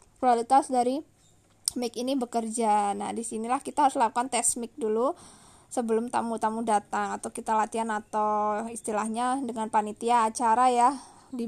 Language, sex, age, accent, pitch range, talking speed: Indonesian, female, 20-39, native, 215-255 Hz, 135 wpm